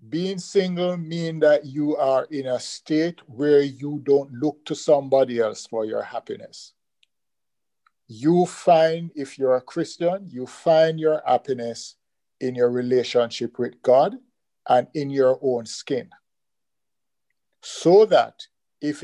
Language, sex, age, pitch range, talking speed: English, male, 50-69, 125-155 Hz, 130 wpm